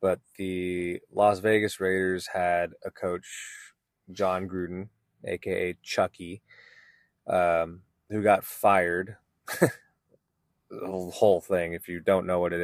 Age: 20-39